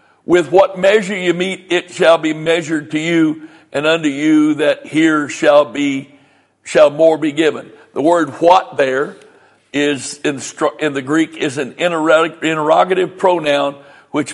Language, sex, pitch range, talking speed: English, male, 160-200 Hz, 145 wpm